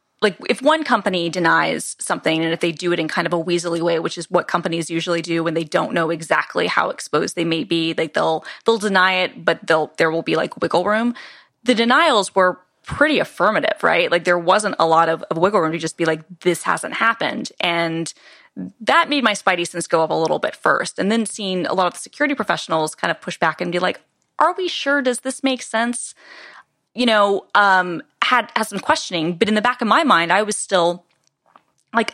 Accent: American